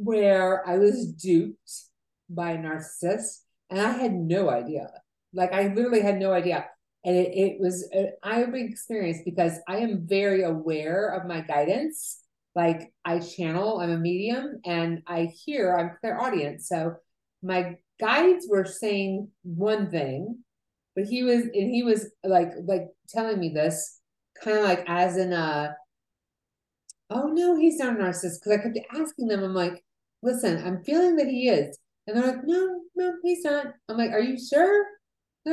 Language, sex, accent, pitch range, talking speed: English, female, American, 180-240 Hz, 175 wpm